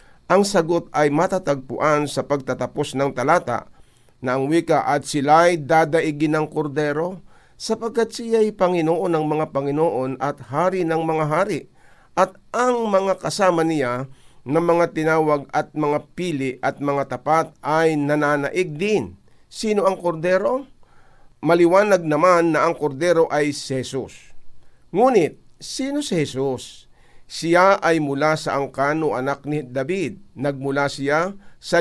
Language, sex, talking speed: Filipino, male, 130 wpm